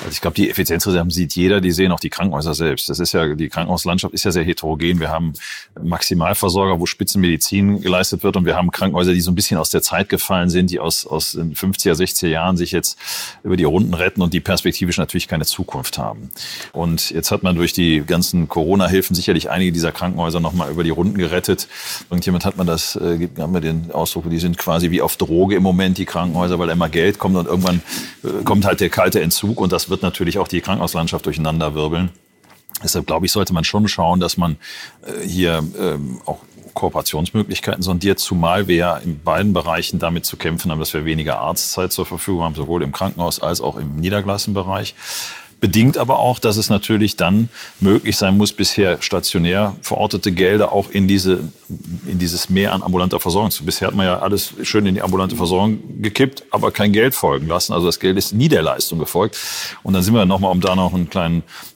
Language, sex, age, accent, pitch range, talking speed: German, male, 40-59, German, 85-95 Hz, 210 wpm